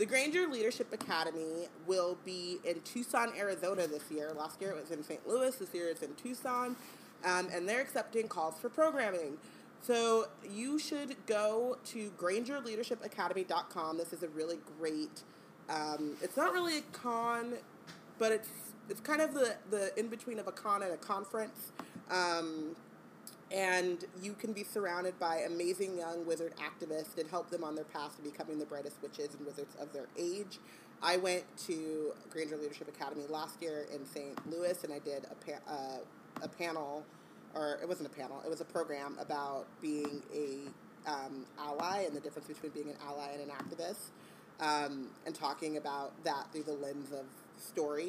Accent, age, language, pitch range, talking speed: American, 30-49, English, 150-210 Hz, 175 wpm